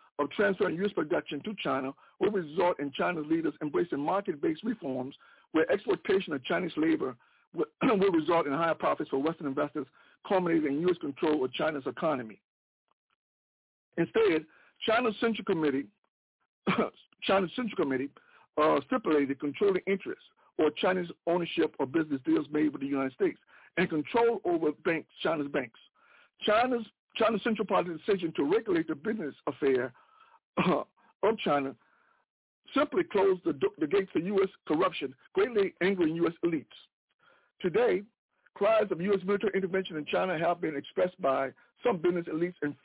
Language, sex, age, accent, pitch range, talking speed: English, male, 60-79, American, 160-255 Hz, 140 wpm